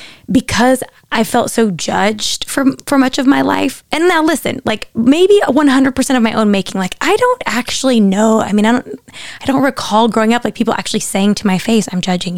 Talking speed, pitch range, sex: 215 wpm, 195-235 Hz, female